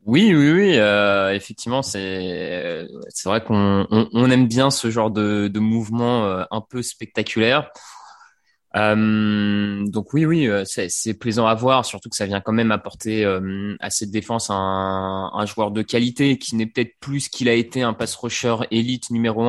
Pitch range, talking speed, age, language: 105-125 Hz, 190 wpm, 20-39, French